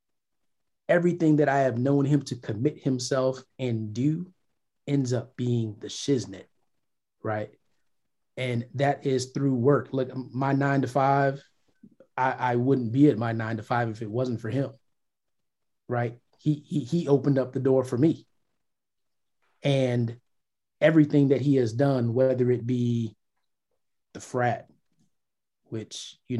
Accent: American